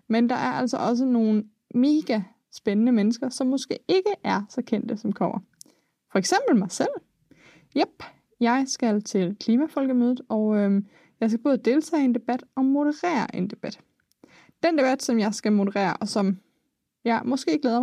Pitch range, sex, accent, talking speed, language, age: 205-255 Hz, female, native, 160 wpm, Danish, 20-39